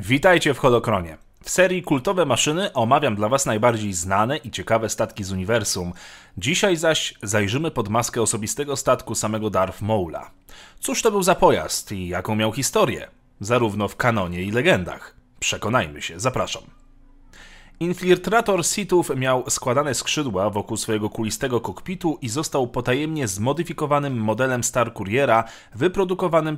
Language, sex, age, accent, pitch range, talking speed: Polish, male, 30-49, native, 110-150 Hz, 140 wpm